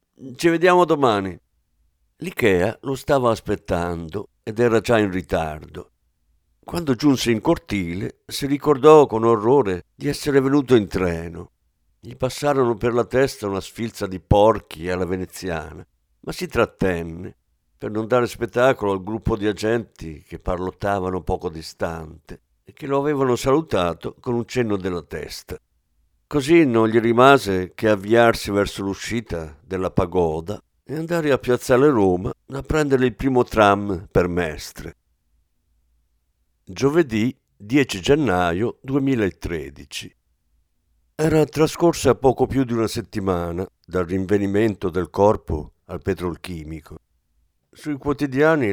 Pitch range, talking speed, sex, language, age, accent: 85-125 Hz, 125 wpm, male, Italian, 50-69, native